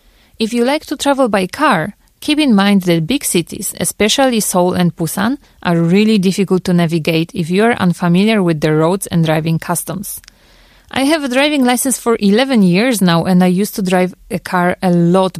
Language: Korean